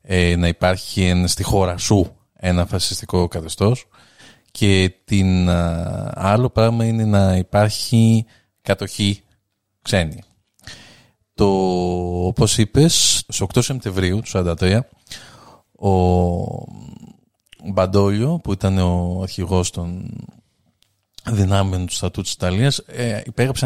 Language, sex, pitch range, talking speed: Greek, male, 95-115 Hz, 95 wpm